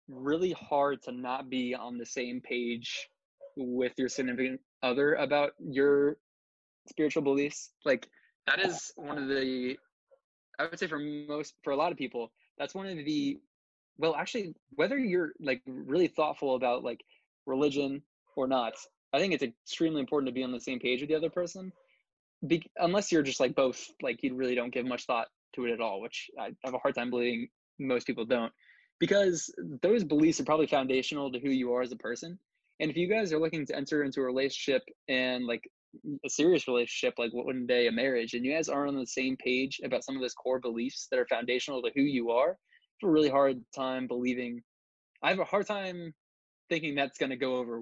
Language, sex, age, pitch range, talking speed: English, male, 20-39, 125-155 Hz, 205 wpm